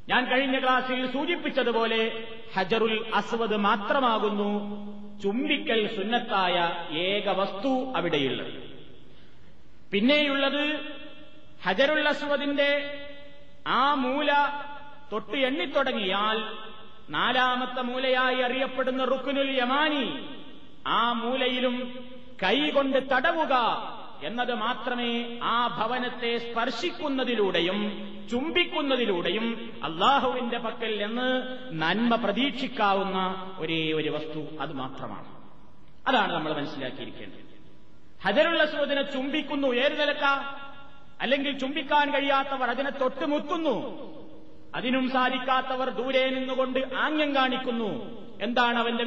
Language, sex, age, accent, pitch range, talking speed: Malayalam, male, 30-49, native, 220-275 Hz, 80 wpm